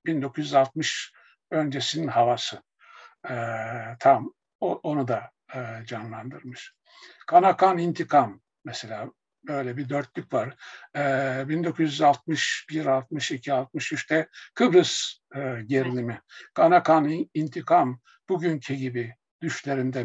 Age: 60-79